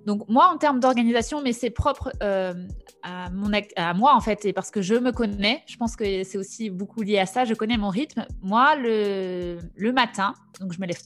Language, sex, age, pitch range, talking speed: French, female, 20-39, 195-255 Hz, 235 wpm